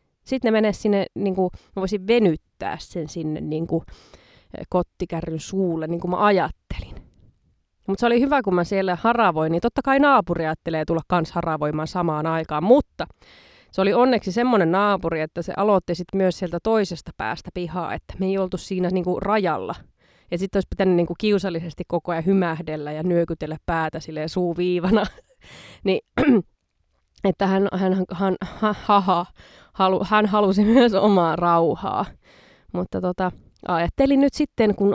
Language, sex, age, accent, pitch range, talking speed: Finnish, female, 20-39, native, 170-210 Hz, 160 wpm